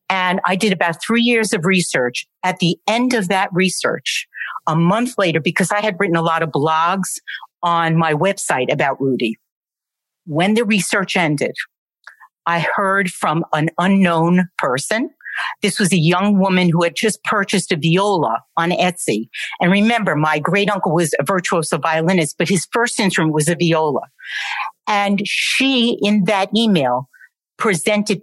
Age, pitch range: 50-69, 170-210 Hz